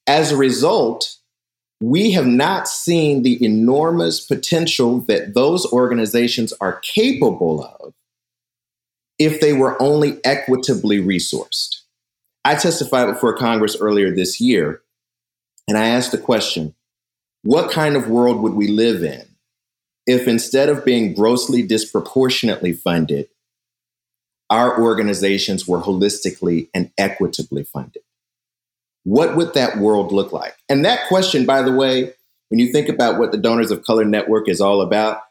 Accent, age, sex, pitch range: American, 40-59, male, 105-130 Hz